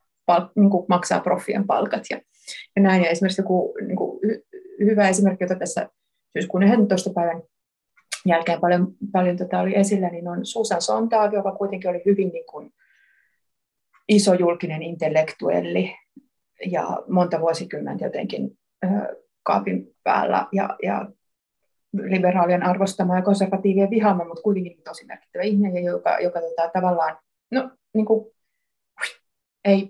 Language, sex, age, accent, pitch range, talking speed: Finnish, female, 30-49, native, 180-220 Hz, 135 wpm